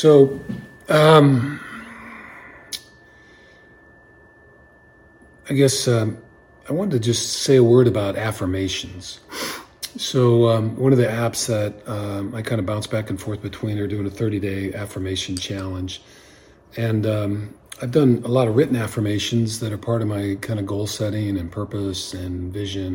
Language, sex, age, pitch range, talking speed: English, male, 40-59, 100-120 Hz, 155 wpm